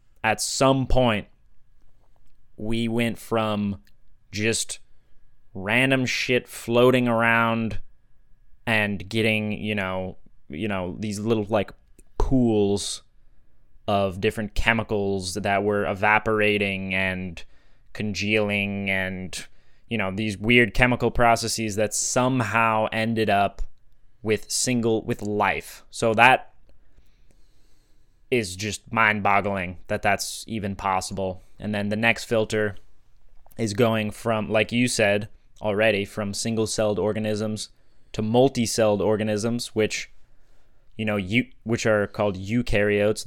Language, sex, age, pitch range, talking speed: English, male, 20-39, 100-115 Hz, 110 wpm